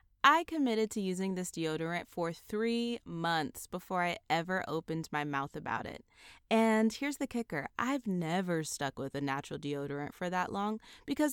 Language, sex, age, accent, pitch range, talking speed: English, female, 20-39, American, 160-235 Hz, 170 wpm